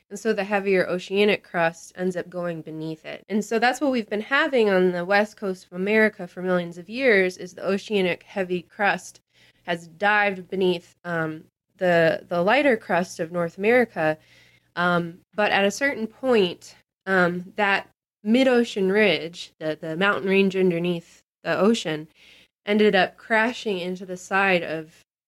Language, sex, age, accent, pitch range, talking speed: English, female, 20-39, American, 170-205 Hz, 160 wpm